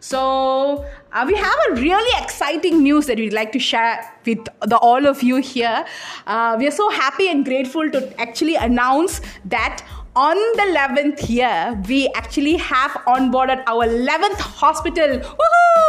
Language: Tamil